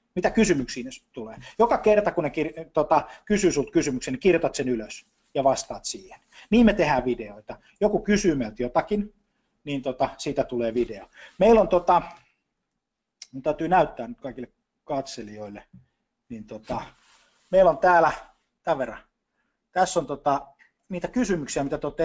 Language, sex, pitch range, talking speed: Finnish, male, 130-180 Hz, 150 wpm